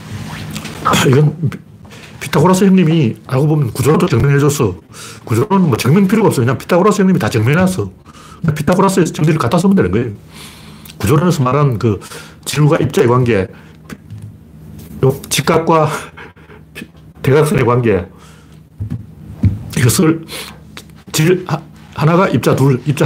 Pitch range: 105-160 Hz